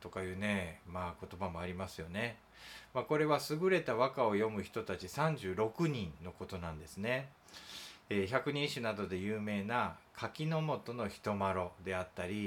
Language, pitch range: Japanese, 90-125 Hz